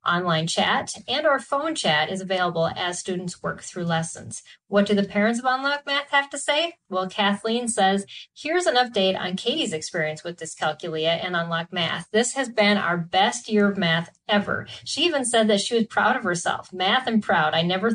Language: English